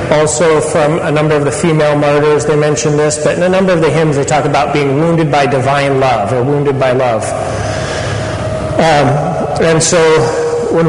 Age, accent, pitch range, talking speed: 40-59, American, 130-160 Hz, 185 wpm